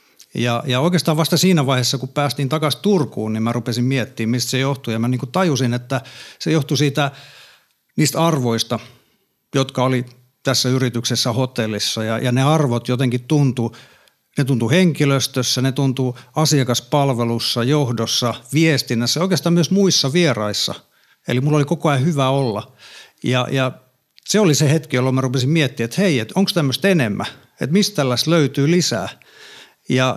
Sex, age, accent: male, 50-69, native